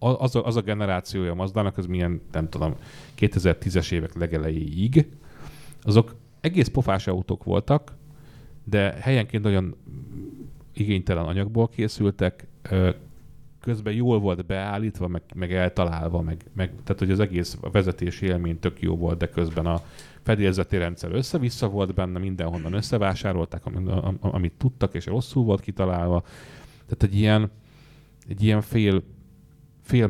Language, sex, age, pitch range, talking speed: English, male, 30-49, 85-115 Hz, 130 wpm